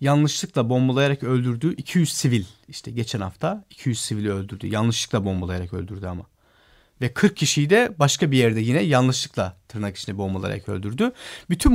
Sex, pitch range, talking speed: male, 125-180 Hz, 150 wpm